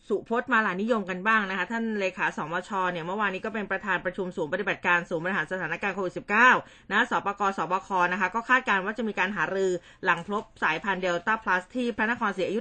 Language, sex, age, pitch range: Thai, female, 20-39, 190-245 Hz